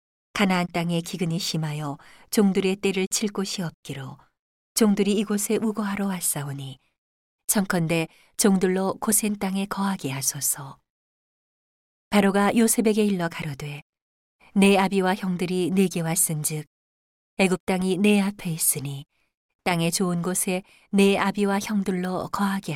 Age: 40-59